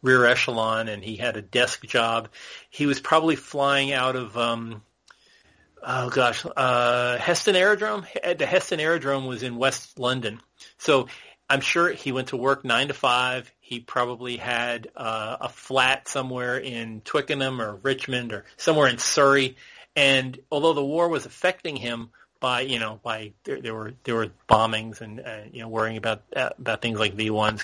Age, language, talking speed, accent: 40-59, English, 170 wpm, American